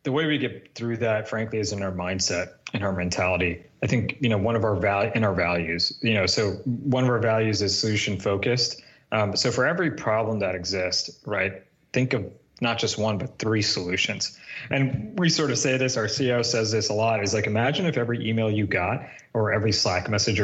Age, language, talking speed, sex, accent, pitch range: 30-49, English, 220 wpm, male, American, 105-130 Hz